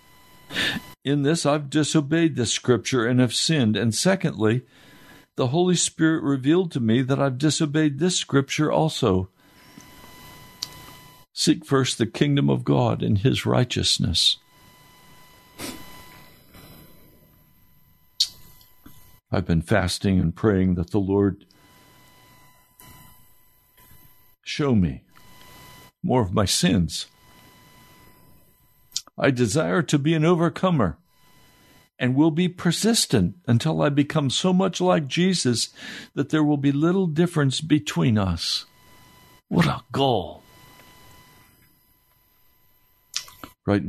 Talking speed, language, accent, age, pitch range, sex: 105 wpm, English, American, 60-79, 100-155 Hz, male